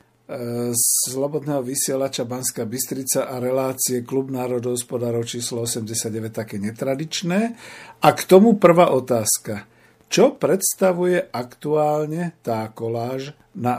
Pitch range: 120-150 Hz